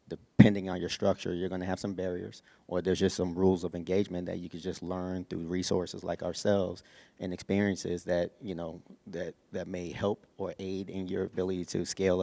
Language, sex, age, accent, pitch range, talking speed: English, male, 30-49, American, 90-100 Hz, 205 wpm